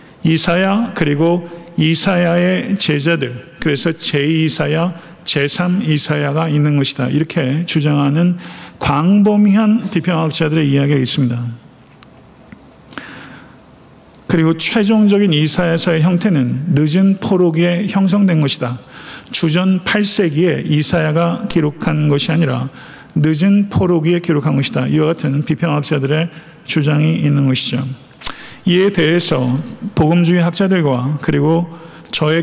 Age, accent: 50-69, native